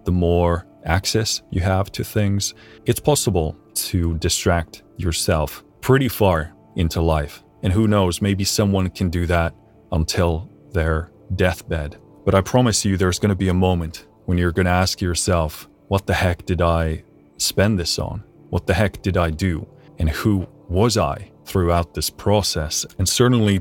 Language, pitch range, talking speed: English, 85-100 Hz, 165 wpm